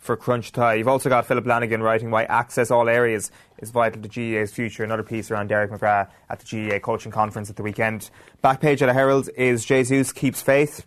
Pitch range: 110-125 Hz